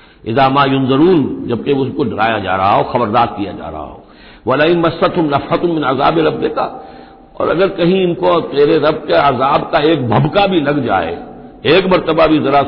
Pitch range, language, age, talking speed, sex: 125-160 Hz, Hindi, 60-79, 185 wpm, male